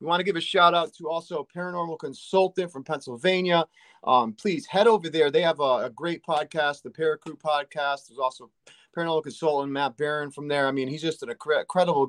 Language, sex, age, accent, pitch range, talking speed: English, male, 30-49, American, 145-170 Hz, 200 wpm